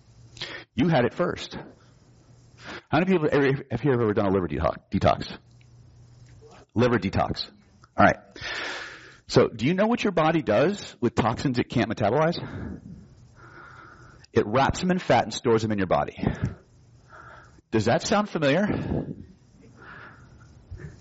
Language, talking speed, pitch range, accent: English, 140 wpm, 105-140 Hz, American